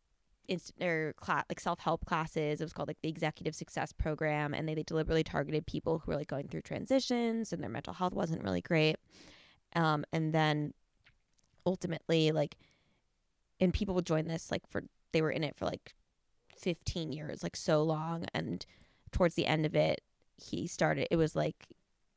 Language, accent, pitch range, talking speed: English, American, 150-165 Hz, 185 wpm